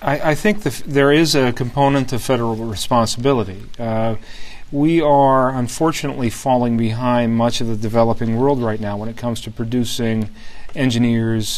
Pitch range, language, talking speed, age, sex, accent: 110-130 Hz, English, 155 wpm, 40-59, male, American